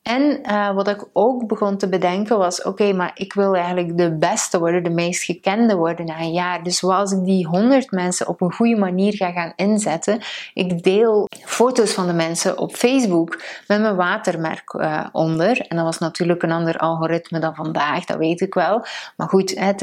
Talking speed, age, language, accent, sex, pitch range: 205 wpm, 30-49, Dutch, Dutch, female, 175-215 Hz